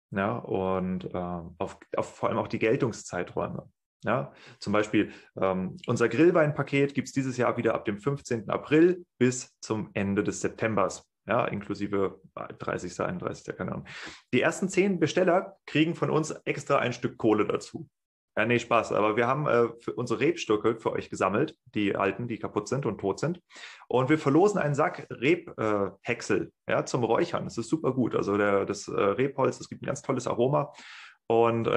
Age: 30-49